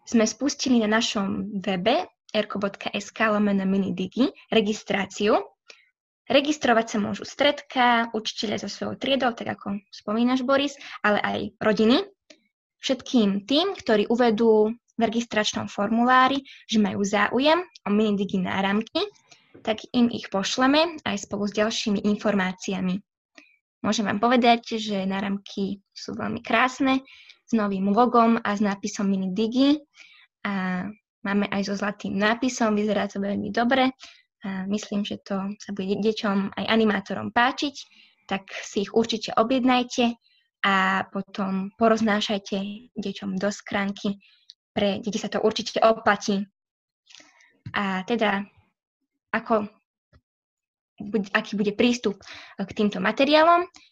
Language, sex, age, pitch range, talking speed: Slovak, female, 20-39, 200-245 Hz, 120 wpm